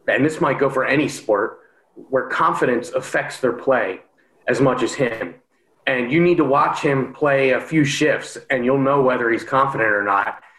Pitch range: 125-155 Hz